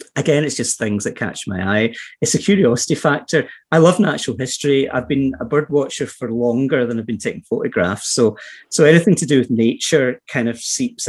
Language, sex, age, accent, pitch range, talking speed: English, male, 30-49, British, 110-145 Hz, 205 wpm